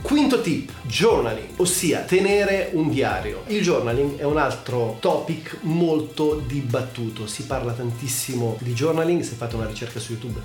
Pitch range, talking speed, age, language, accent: 115-150 Hz, 150 wpm, 30-49, Italian, native